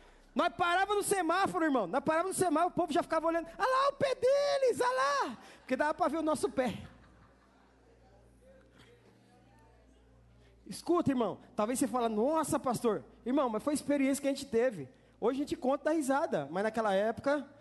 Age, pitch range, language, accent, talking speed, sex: 20-39, 210-290 Hz, English, Brazilian, 175 wpm, male